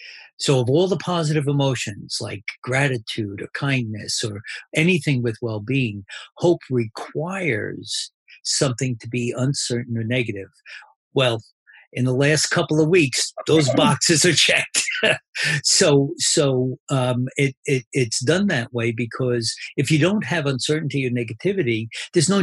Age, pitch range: 50-69, 120-145 Hz